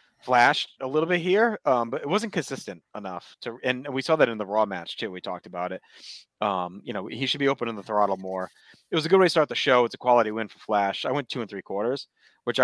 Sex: male